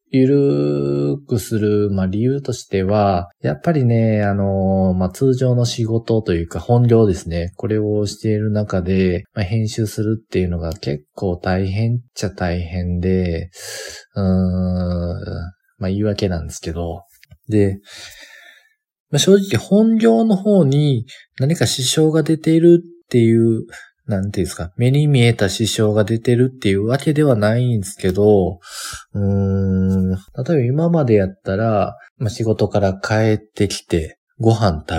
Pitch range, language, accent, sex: 95-125 Hz, Japanese, native, male